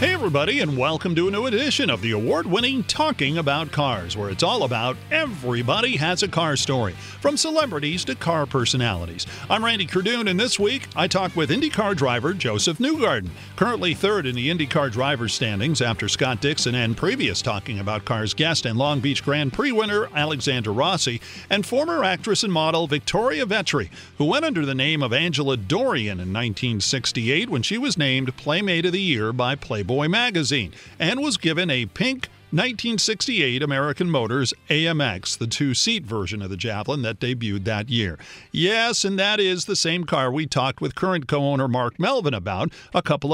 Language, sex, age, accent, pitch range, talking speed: English, male, 40-59, American, 125-190 Hz, 180 wpm